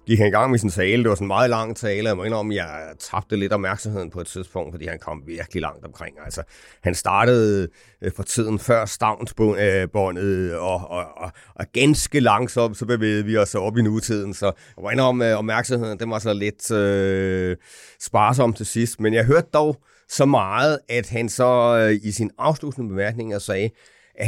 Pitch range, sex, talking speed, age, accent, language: 95-115 Hz, male, 195 wpm, 30-49, native, Danish